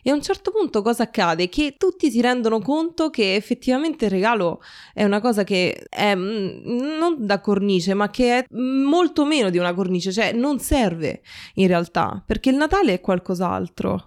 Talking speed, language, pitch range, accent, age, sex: 180 wpm, Italian, 185-230 Hz, native, 20-39, female